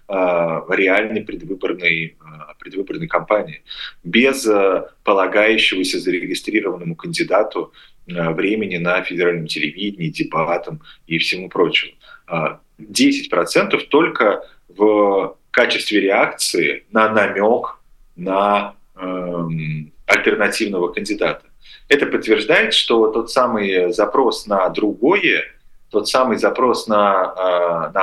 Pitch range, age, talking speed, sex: 90-110 Hz, 30-49, 90 wpm, male